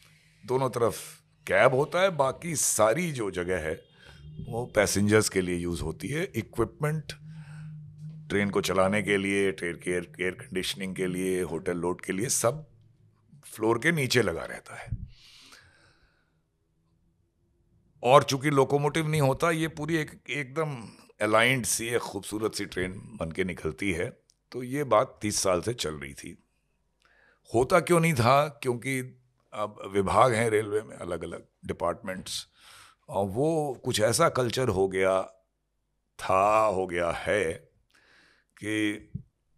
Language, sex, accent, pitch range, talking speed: Hindi, male, native, 95-135 Hz, 135 wpm